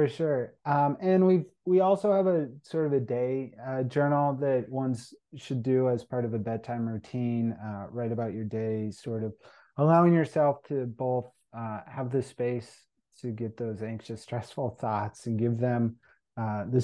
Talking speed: 180 wpm